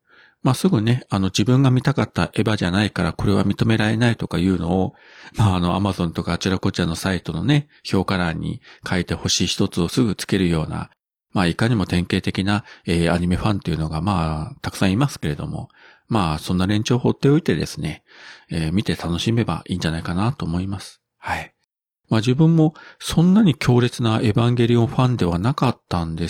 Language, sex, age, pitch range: Japanese, male, 40-59, 90-110 Hz